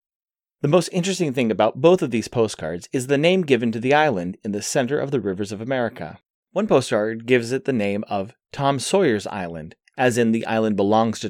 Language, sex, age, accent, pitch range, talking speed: English, male, 30-49, American, 105-145 Hz, 210 wpm